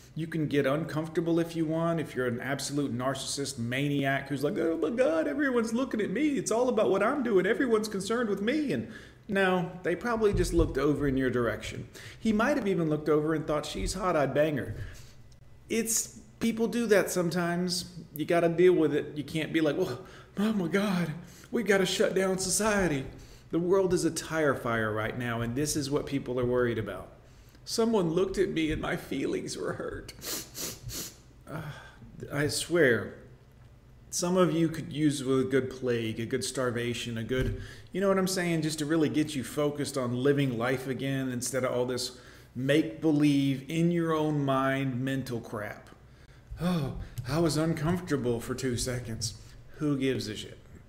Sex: male